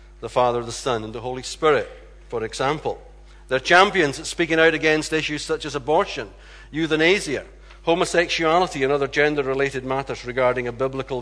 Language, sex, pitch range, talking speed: English, male, 115-155 Hz, 155 wpm